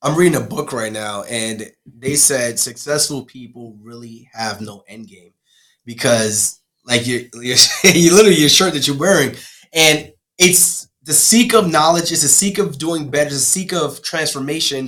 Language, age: English, 20-39